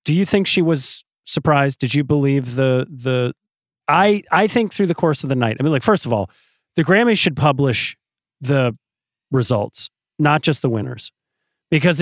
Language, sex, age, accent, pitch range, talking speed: English, male, 30-49, American, 125-165 Hz, 185 wpm